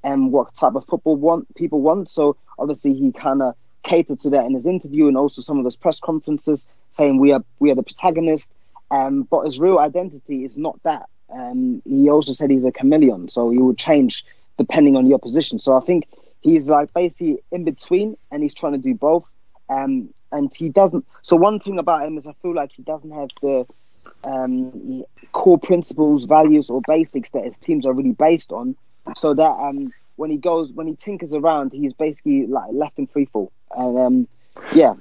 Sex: male